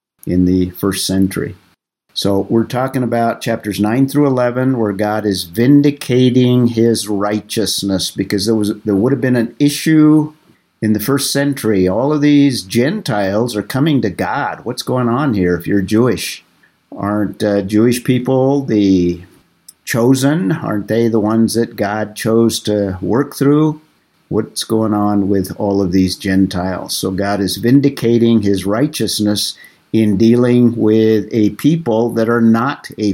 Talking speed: 155 wpm